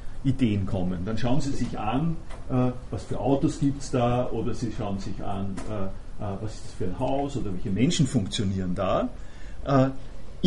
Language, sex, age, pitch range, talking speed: German, male, 50-69, 110-150 Hz, 190 wpm